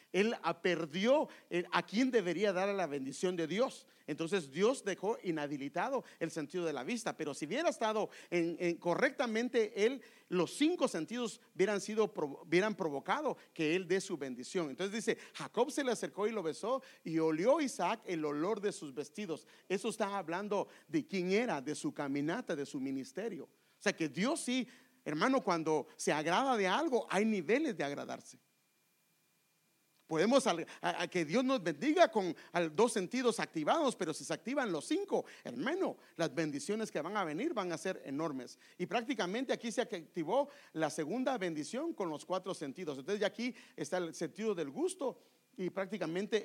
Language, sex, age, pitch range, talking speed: English, male, 50-69, 165-235 Hz, 170 wpm